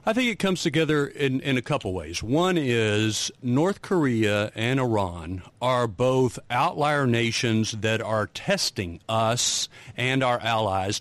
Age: 50-69